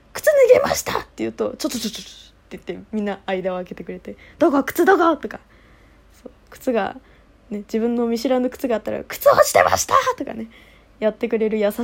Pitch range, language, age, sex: 200-255 Hz, Japanese, 20-39, female